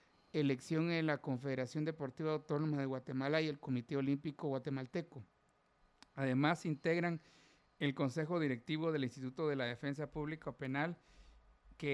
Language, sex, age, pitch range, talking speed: Spanish, male, 50-69, 135-155 Hz, 130 wpm